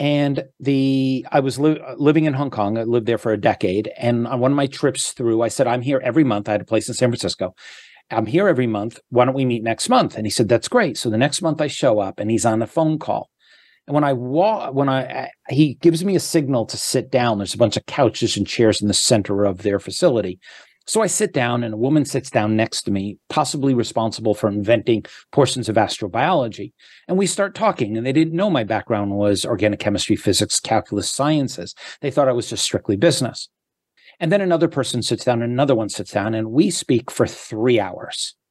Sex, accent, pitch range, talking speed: male, American, 110-145 Hz, 235 wpm